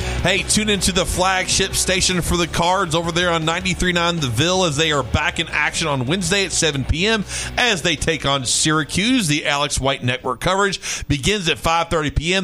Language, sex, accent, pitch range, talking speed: English, male, American, 140-180 Hz, 190 wpm